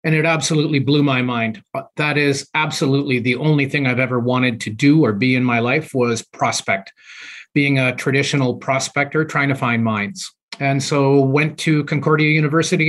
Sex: male